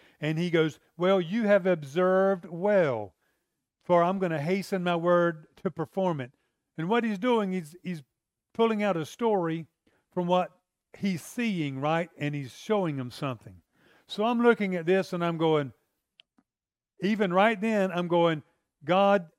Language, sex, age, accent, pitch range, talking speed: English, male, 50-69, American, 165-210 Hz, 160 wpm